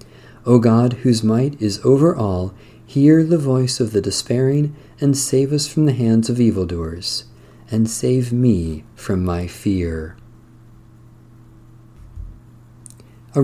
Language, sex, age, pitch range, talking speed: English, male, 40-59, 110-130 Hz, 125 wpm